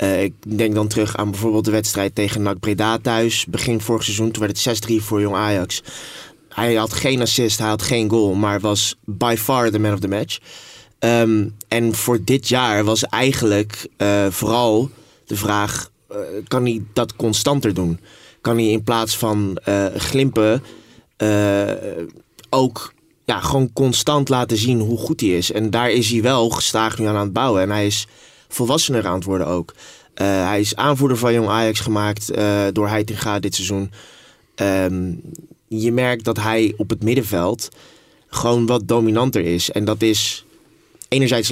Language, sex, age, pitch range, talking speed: Dutch, male, 20-39, 105-120 Hz, 175 wpm